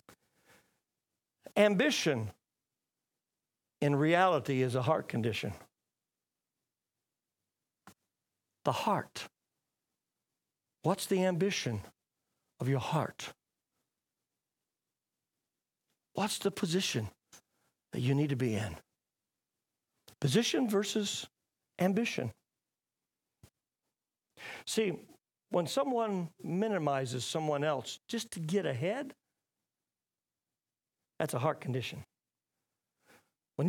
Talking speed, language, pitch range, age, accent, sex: 75 wpm, English, 145-240 Hz, 60-79, American, male